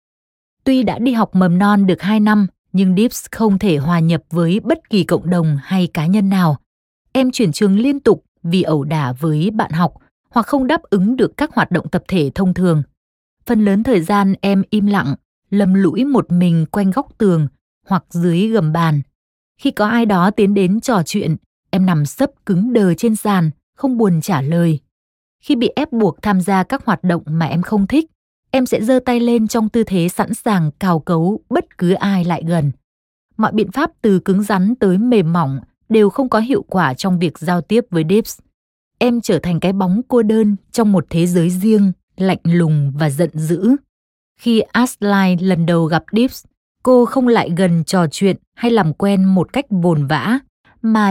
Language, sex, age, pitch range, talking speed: Vietnamese, female, 20-39, 170-225 Hz, 200 wpm